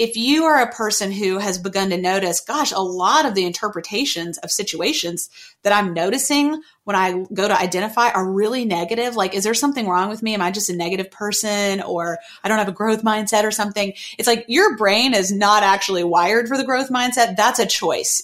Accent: American